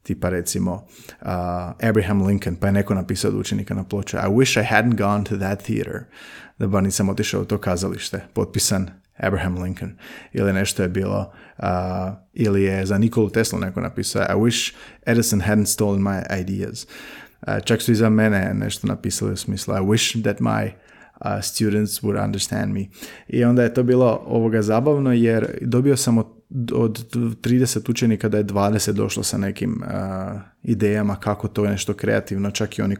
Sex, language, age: male, Croatian, 30-49